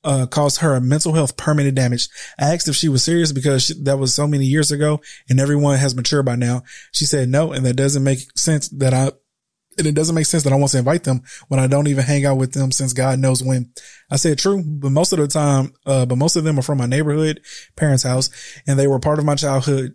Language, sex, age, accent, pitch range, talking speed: English, male, 20-39, American, 130-145 Hz, 260 wpm